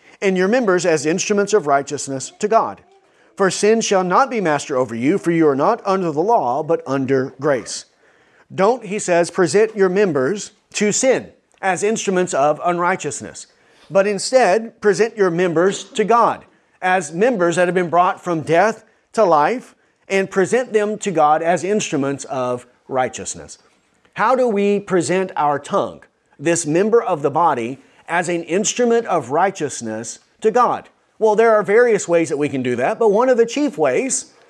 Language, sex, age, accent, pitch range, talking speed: English, male, 40-59, American, 155-210 Hz, 170 wpm